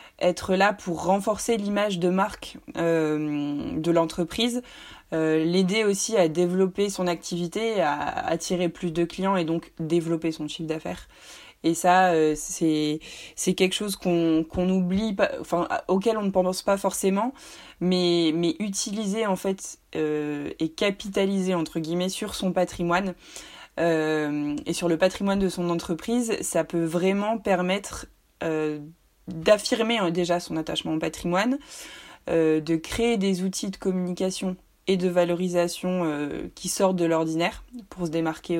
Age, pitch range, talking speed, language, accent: 20-39, 160-190 Hz, 145 wpm, French, French